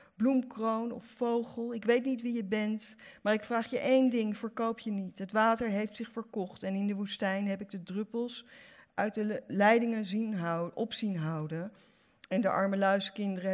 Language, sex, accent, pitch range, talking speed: Dutch, female, Dutch, 180-225 Hz, 195 wpm